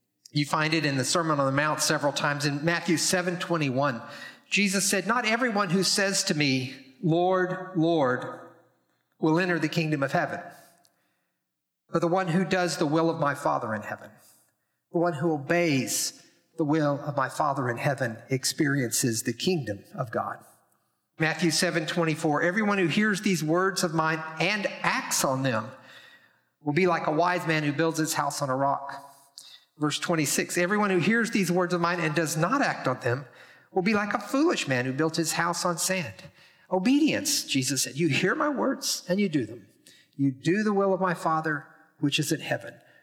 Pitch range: 145-185 Hz